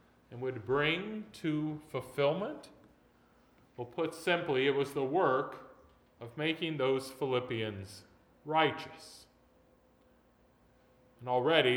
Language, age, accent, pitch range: English, 40-59, American, 125-170 Hz